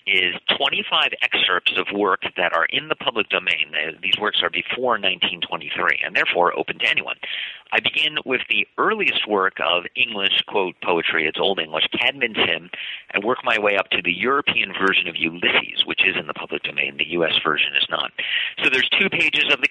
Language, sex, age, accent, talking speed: English, male, 50-69, American, 190 wpm